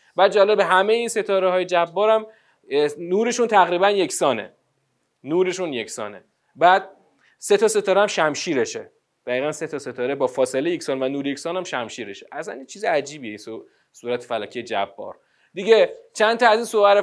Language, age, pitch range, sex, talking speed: Persian, 30-49, 145-235 Hz, male, 150 wpm